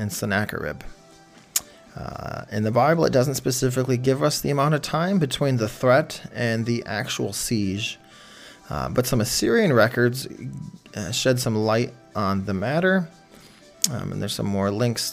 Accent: American